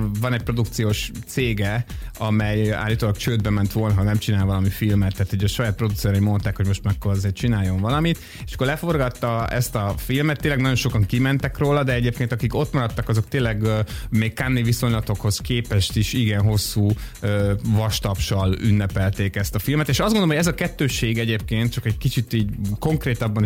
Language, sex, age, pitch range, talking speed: Hungarian, male, 30-49, 100-120 Hz, 180 wpm